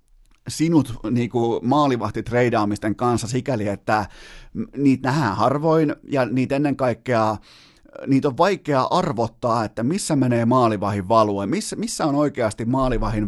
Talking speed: 120 wpm